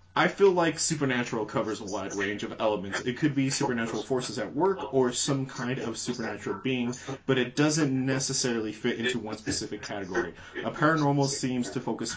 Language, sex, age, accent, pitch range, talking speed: English, male, 30-49, American, 110-140 Hz, 185 wpm